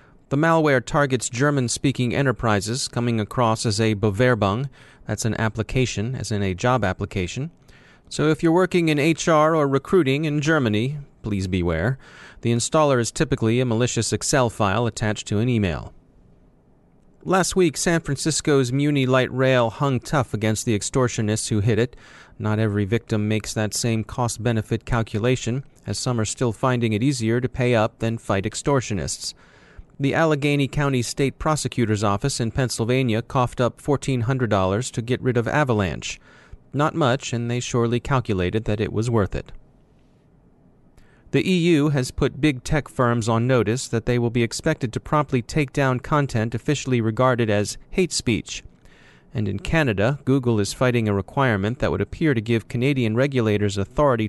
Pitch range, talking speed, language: 110-140 Hz, 160 wpm, English